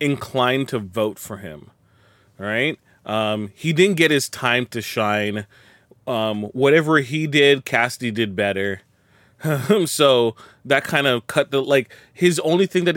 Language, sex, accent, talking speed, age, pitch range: English, male, American, 155 wpm, 30-49, 105-130 Hz